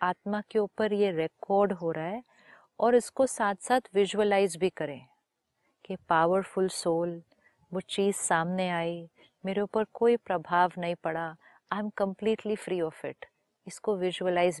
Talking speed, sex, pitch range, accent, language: 150 wpm, female, 175-220 Hz, native, Hindi